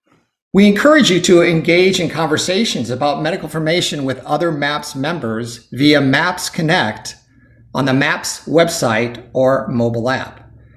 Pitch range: 115-160 Hz